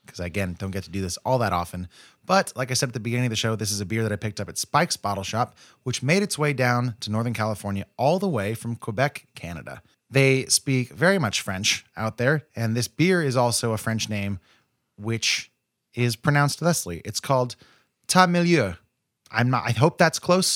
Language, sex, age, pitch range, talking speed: English, male, 20-39, 105-135 Hz, 215 wpm